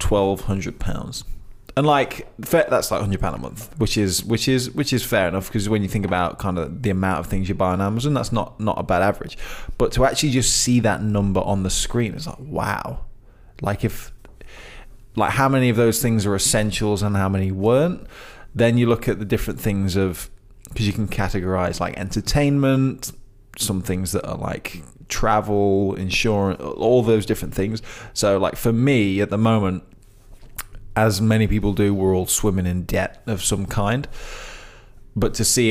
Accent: British